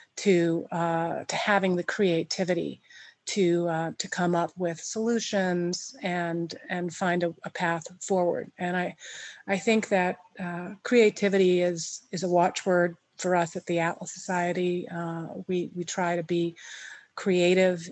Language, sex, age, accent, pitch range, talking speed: English, female, 40-59, American, 170-190 Hz, 145 wpm